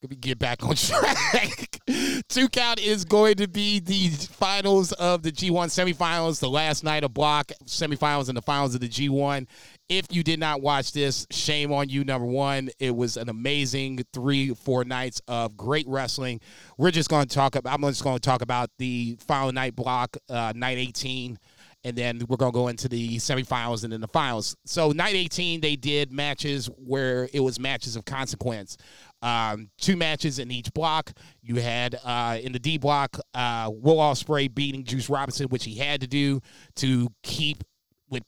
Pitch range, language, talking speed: 125-150 Hz, English, 190 wpm